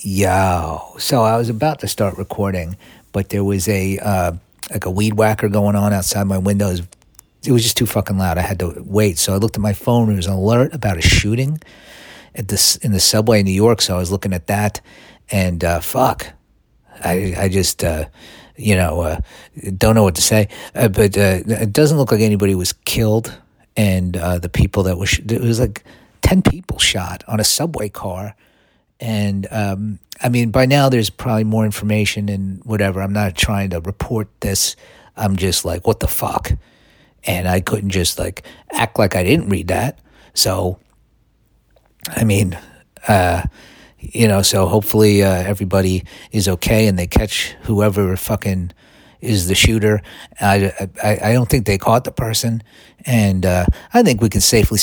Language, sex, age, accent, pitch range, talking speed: English, male, 50-69, American, 95-110 Hz, 190 wpm